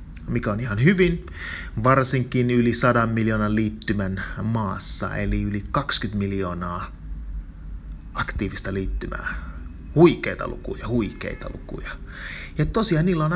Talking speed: 110 wpm